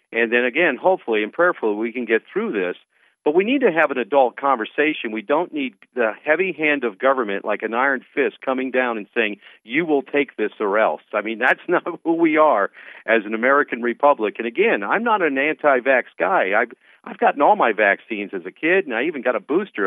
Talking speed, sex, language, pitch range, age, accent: 225 wpm, male, English, 110-150 Hz, 50-69, American